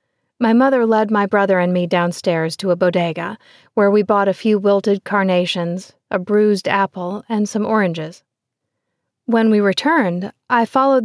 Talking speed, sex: 160 wpm, female